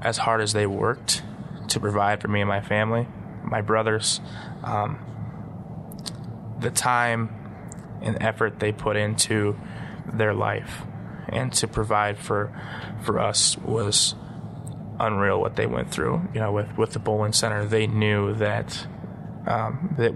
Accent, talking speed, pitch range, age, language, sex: American, 145 wpm, 105-115 Hz, 20-39, English, male